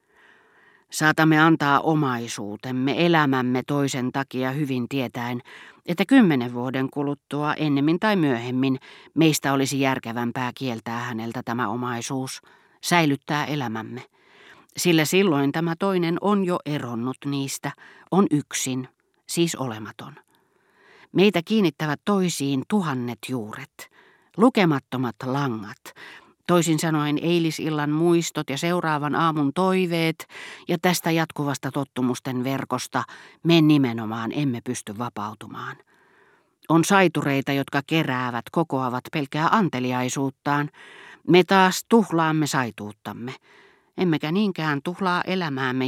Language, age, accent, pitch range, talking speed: Finnish, 40-59, native, 125-165 Hz, 100 wpm